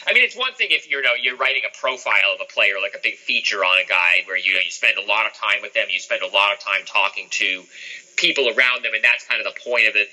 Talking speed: 310 wpm